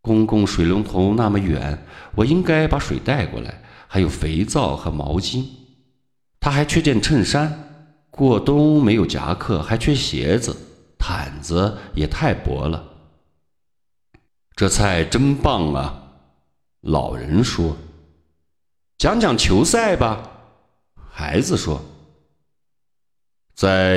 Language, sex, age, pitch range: Chinese, male, 50-69, 80-130 Hz